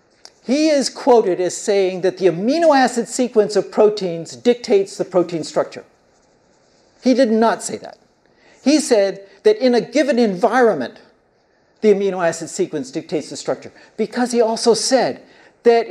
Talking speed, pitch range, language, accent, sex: 150 wpm, 190-250 Hz, English, American, male